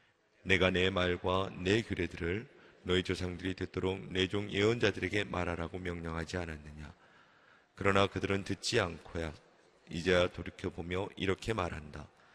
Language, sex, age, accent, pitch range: Korean, male, 30-49, native, 85-100 Hz